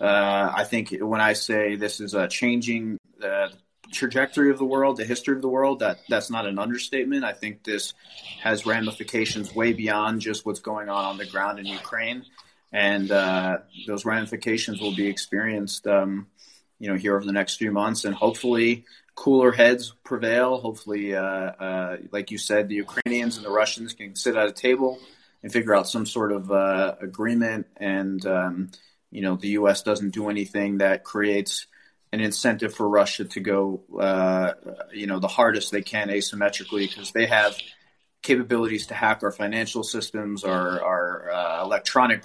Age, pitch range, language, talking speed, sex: 30-49, 100-120 Hz, English, 175 wpm, male